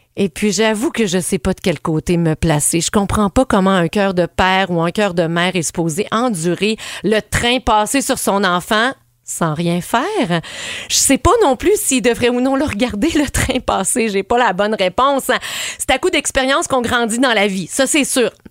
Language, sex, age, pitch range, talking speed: French, female, 40-59, 175-235 Hz, 220 wpm